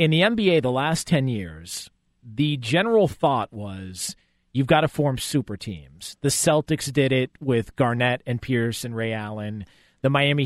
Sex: male